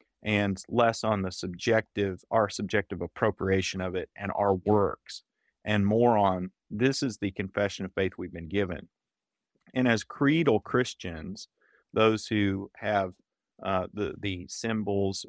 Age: 30-49